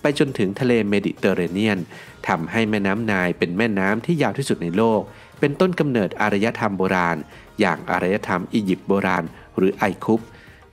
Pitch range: 95-120 Hz